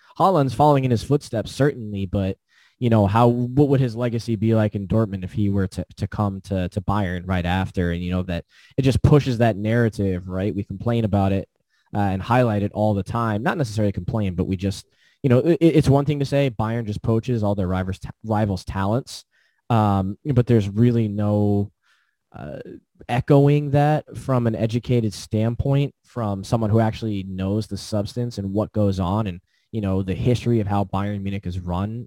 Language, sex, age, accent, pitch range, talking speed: English, male, 20-39, American, 100-125 Hz, 200 wpm